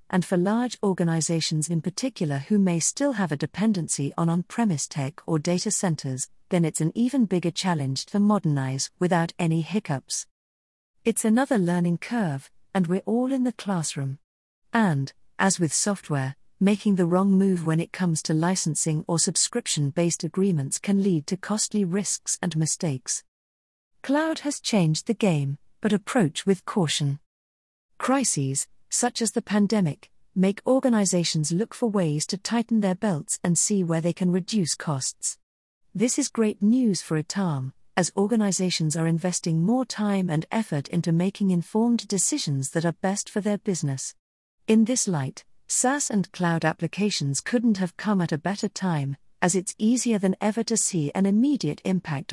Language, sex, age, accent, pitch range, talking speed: English, female, 40-59, British, 155-210 Hz, 160 wpm